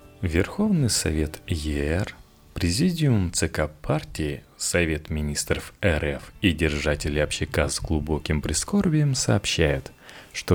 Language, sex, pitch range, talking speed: Russian, male, 80-120 Hz, 95 wpm